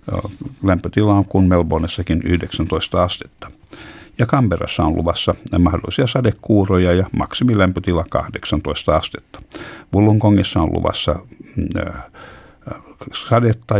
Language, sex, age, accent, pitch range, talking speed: Finnish, male, 60-79, native, 85-105 Hz, 85 wpm